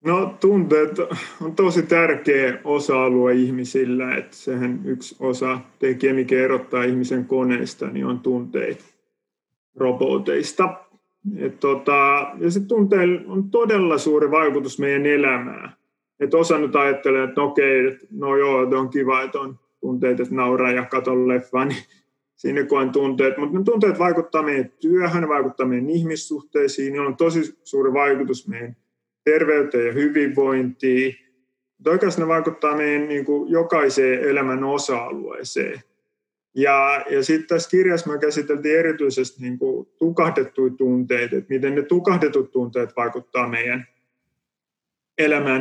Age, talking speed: 30-49, 130 wpm